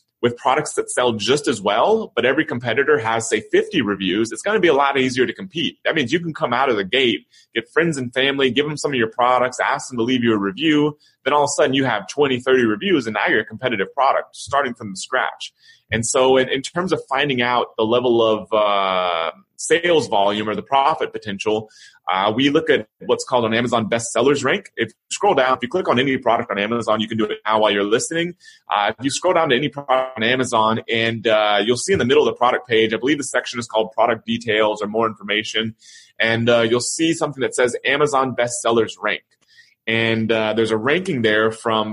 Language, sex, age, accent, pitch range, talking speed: English, male, 30-49, American, 115-140 Hz, 235 wpm